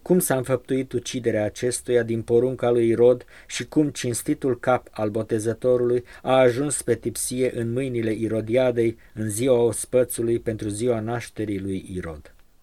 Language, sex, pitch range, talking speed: Romanian, male, 110-130 Hz, 145 wpm